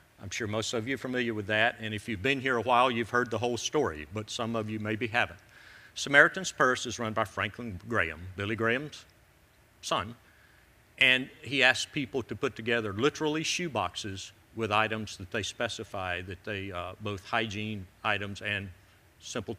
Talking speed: 185 wpm